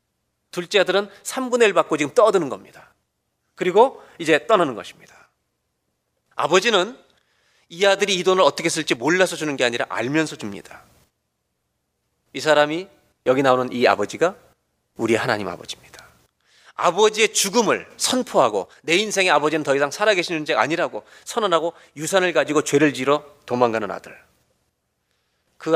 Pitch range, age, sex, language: 100-165 Hz, 40-59, male, Korean